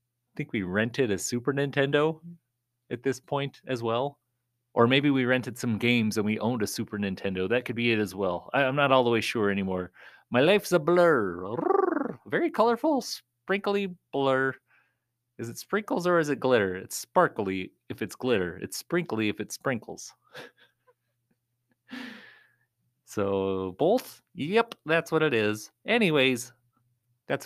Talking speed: 150 wpm